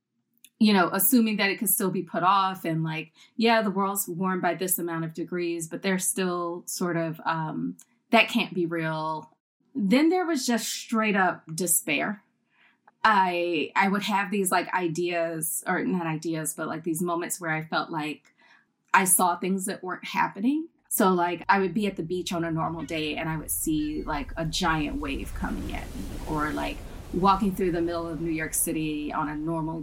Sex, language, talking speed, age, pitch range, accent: female, English, 195 wpm, 20-39, 165-210 Hz, American